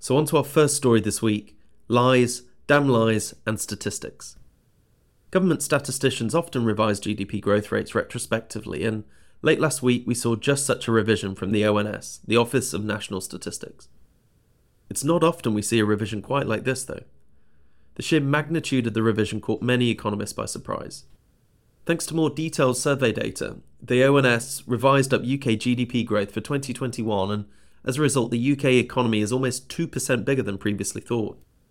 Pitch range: 105-140 Hz